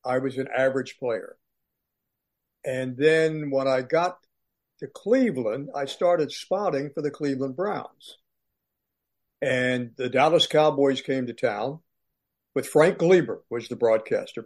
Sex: male